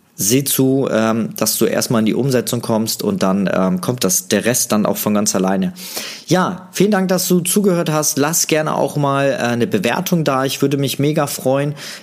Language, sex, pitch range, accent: German, male, 110-140 Hz, German